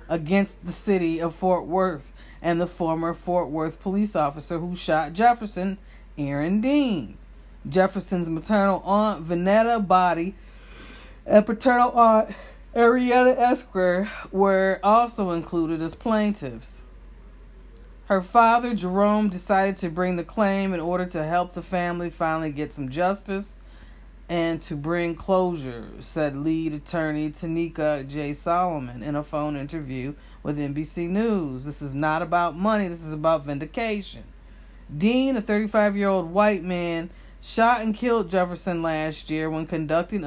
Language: English